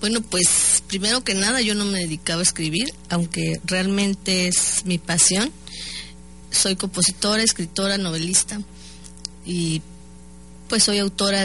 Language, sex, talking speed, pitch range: Spanish, female, 130 wpm, 170-200 Hz